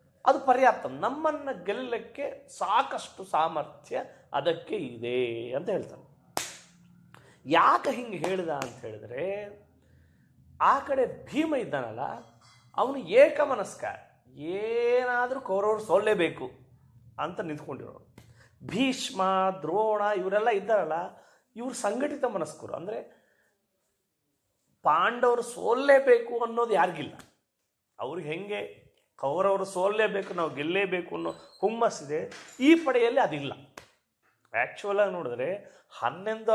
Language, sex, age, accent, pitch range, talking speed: Kannada, male, 30-49, native, 165-255 Hz, 90 wpm